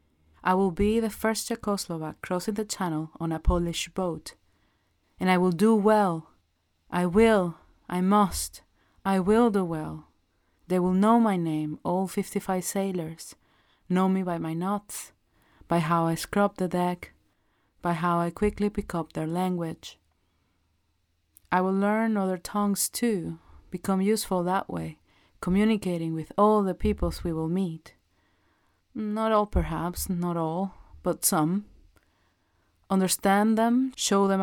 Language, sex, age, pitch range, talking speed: English, female, 30-49, 160-205 Hz, 145 wpm